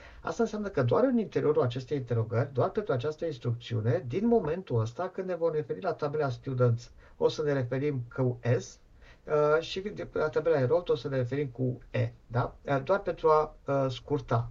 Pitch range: 120-160 Hz